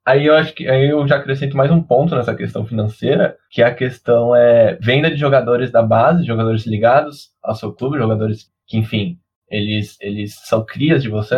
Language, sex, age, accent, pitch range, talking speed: Portuguese, male, 10-29, Brazilian, 110-145 Hz, 200 wpm